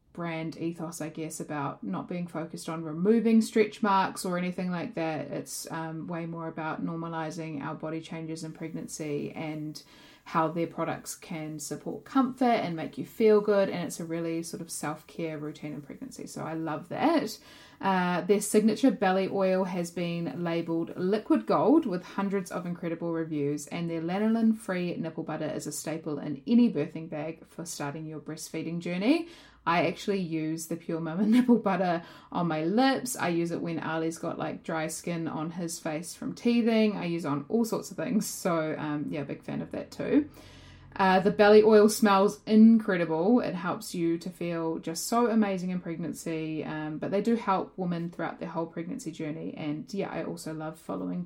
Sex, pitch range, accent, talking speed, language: female, 160-205 Hz, Australian, 185 wpm, English